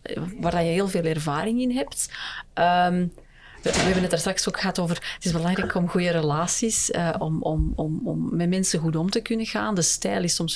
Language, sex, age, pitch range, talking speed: English, female, 30-49, 170-215 Hz, 215 wpm